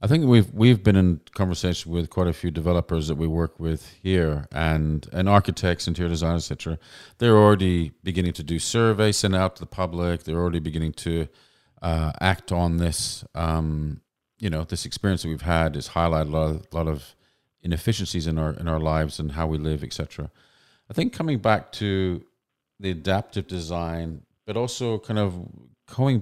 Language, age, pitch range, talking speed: English, 40-59, 80-100 Hz, 190 wpm